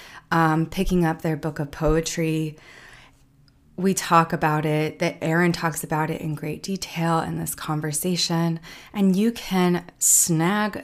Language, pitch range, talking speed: English, 155-190 Hz, 145 wpm